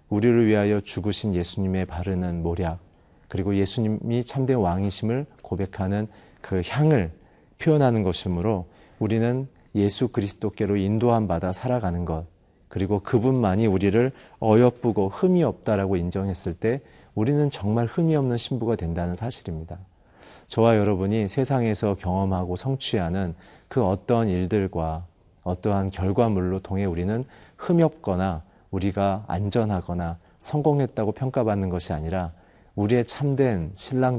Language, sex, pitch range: Korean, male, 95-115 Hz